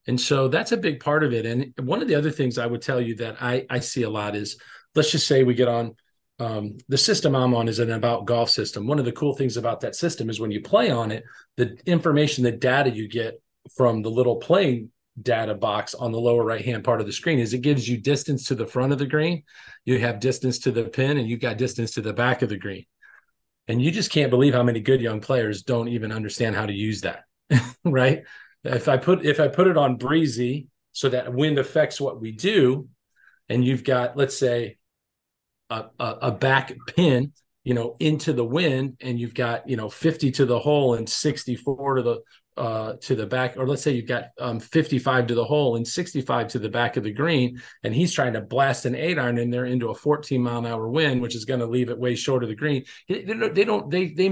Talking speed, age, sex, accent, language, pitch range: 245 wpm, 40-59, male, American, English, 120-140 Hz